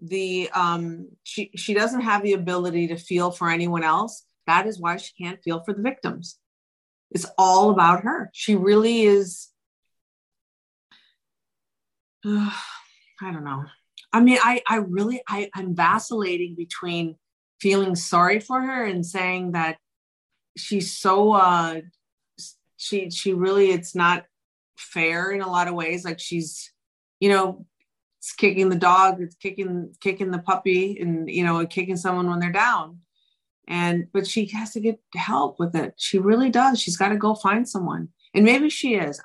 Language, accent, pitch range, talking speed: English, American, 175-205 Hz, 160 wpm